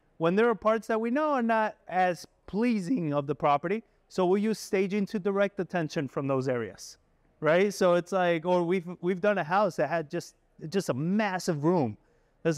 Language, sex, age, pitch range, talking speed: English, male, 30-49, 155-195 Hz, 200 wpm